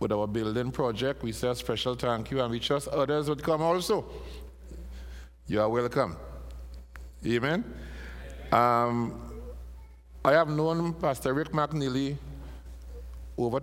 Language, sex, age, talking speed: English, male, 60-79, 130 wpm